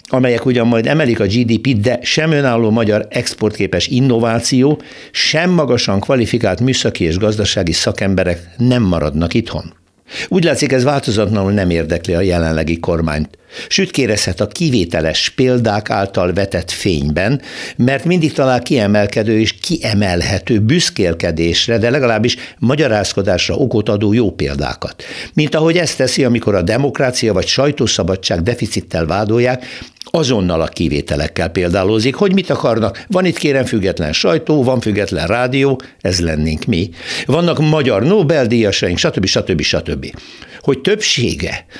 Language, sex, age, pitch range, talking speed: Hungarian, male, 60-79, 95-130 Hz, 130 wpm